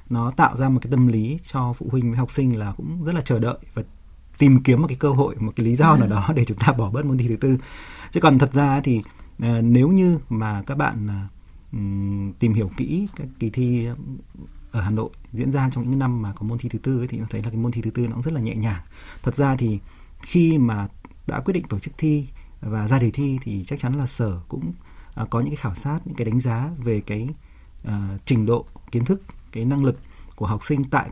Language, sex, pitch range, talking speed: Vietnamese, male, 110-135 Hz, 245 wpm